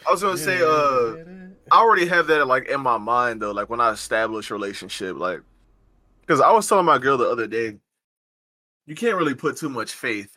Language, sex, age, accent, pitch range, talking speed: English, male, 20-39, American, 110-135 Hz, 210 wpm